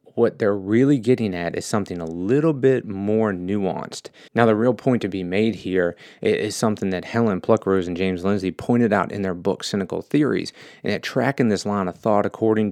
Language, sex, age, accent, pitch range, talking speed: English, male, 30-49, American, 90-110 Hz, 205 wpm